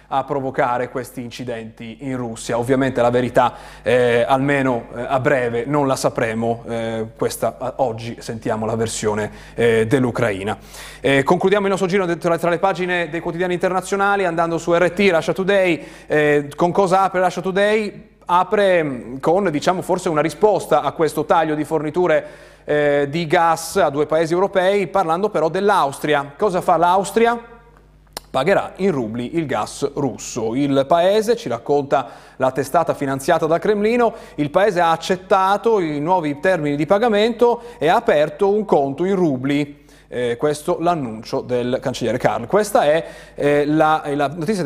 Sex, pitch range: male, 140-185 Hz